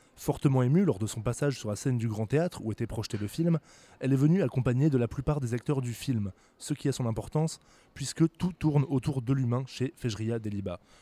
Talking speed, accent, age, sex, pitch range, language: 230 wpm, French, 20-39, male, 115-145 Hz, French